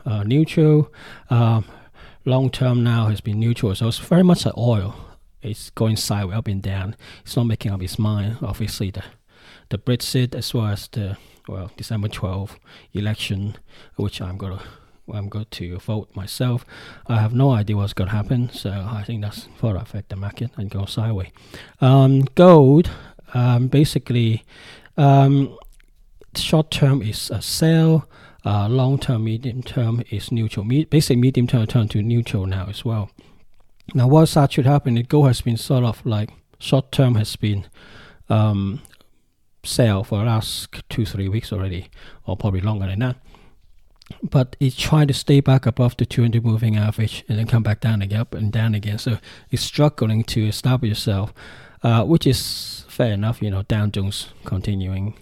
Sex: male